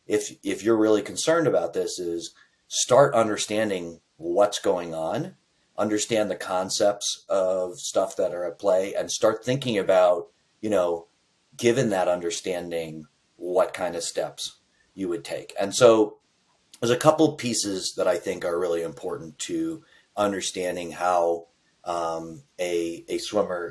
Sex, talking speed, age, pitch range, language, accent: male, 145 wpm, 30-49, 90-125 Hz, English, American